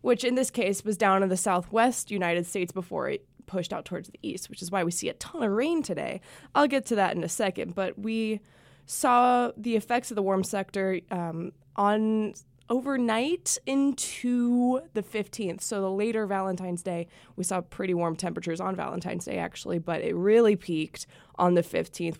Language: English